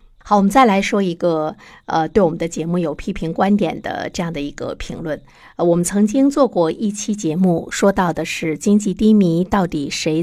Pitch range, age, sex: 160-205 Hz, 50-69, female